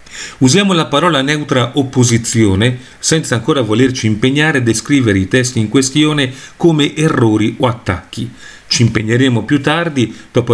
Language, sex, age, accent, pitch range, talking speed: Italian, male, 40-59, native, 115-150 Hz, 135 wpm